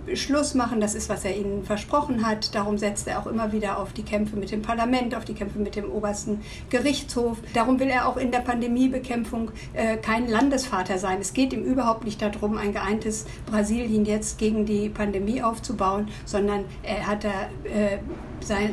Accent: German